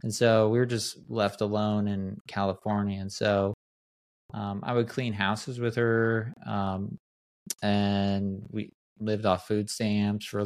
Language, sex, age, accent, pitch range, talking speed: English, male, 20-39, American, 100-120 Hz, 155 wpm